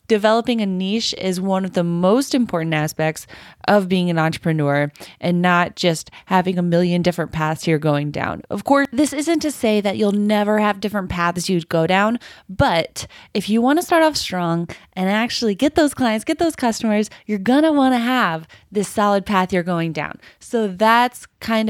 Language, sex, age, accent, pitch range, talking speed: English, female, 20-39, American, 165-235 Hz, 195 wpm